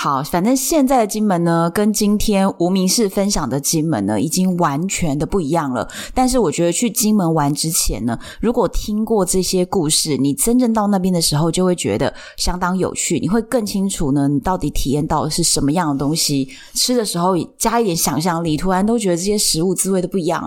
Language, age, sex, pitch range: Chinese, 20-39, female, 155-210 Hz